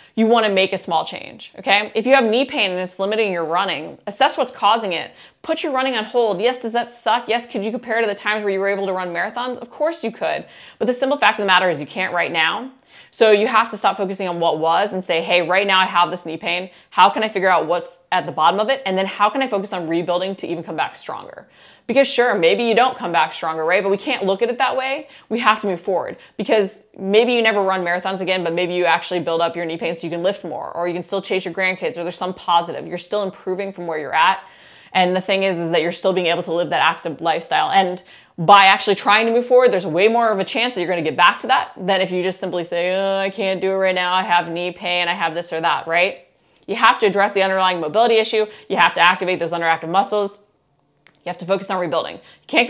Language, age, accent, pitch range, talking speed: English, 20-39, American, 175-215 Hz, 280 wpm